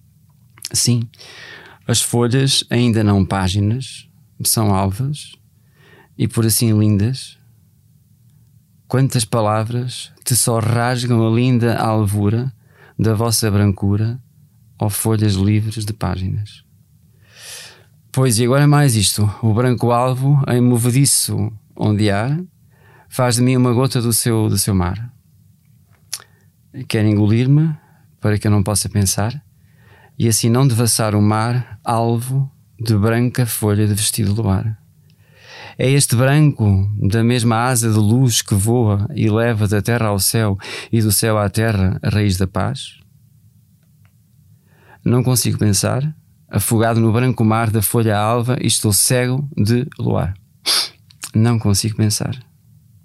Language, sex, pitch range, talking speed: Portuguese, male, 105-130 Hz, 130 wpm